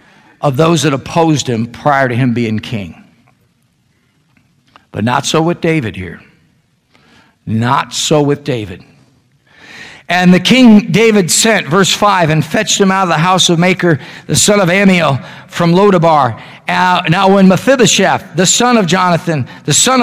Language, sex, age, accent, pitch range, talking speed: English, male, 50-69, American, 135-185 Hz, 155 wpm